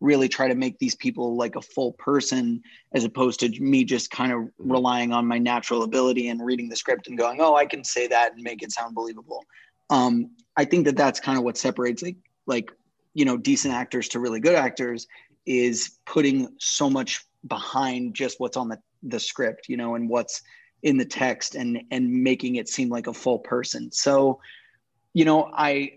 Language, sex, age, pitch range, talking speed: English, male, 20-39, 120-140 Hz, 205 wpm